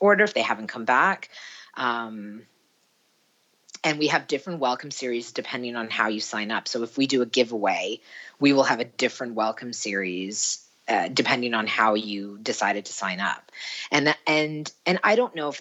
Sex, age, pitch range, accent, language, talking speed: female, 40-59, 110-145 Hz, American, English, 185 wpm